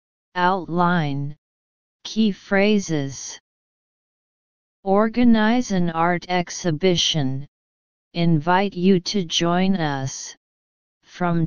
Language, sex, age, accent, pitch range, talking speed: English, female, 40-59, American, 155-195 Hz, 70 wpm